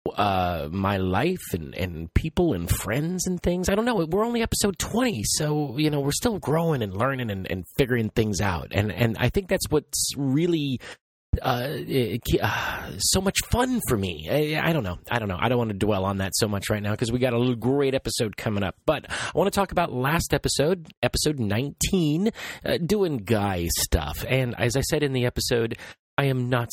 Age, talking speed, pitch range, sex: 30-49, 215 wpm, 105-150 Hz, male